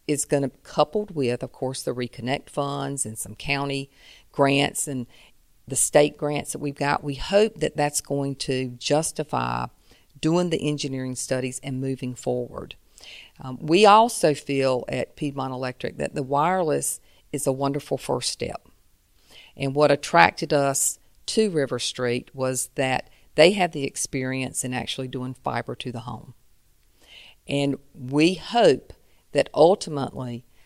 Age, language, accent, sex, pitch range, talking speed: 50-69, English, American, female, 130-160 Hz, 150 wpm